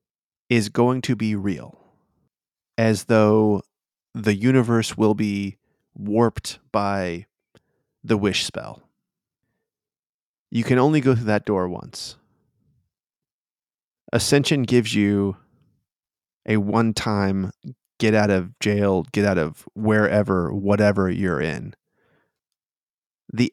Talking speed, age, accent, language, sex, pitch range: 105 wpm, 20-39, American, English, male, 100-115 Hz